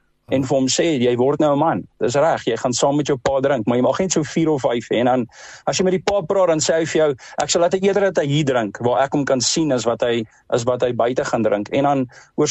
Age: 50-69